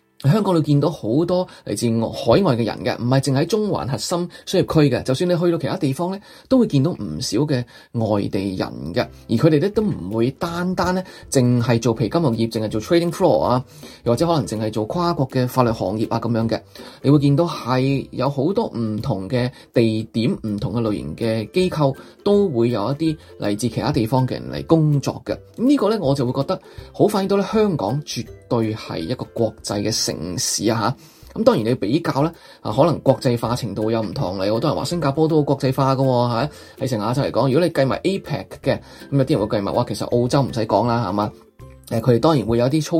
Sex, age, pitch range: male, 20-39, 115-155 Hz